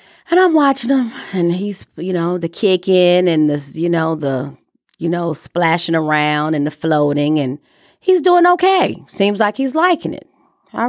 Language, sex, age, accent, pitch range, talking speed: English, female, 30-49, American, 160-225 Hz, 180 wpm